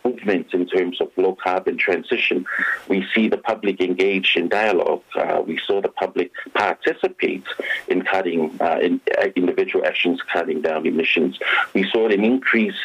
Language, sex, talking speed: English, male, 145 wpm